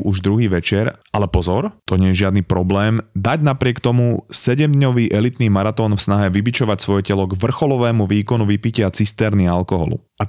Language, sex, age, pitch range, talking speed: Slovak, male, 20-39, 95-115 Hz, 175 wpm